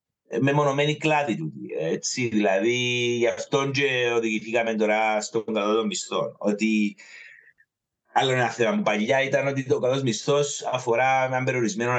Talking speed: 150 wpm